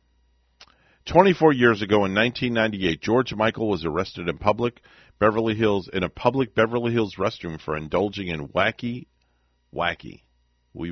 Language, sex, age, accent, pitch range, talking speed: English, male, 50-69, American, 70-115 Hz, 135 wpm